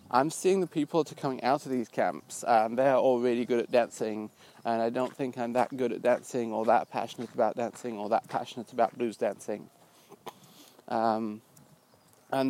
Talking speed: 190 wpm